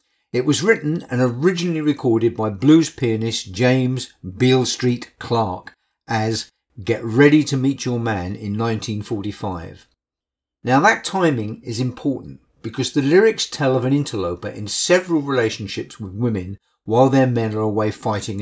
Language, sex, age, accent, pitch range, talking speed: English, male, 50-69, British, 110-150 Hz, 145 wpm